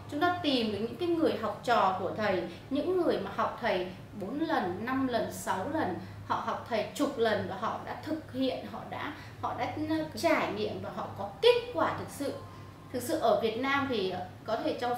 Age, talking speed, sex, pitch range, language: 20-39, 210 wpm, female, 225-295 Hz, Vietnamese